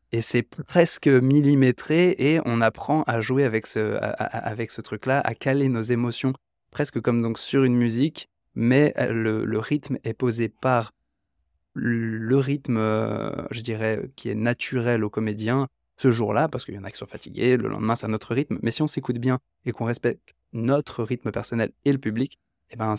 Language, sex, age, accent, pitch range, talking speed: French, male, 20-39, French, 105-125 Hz, 195 wpm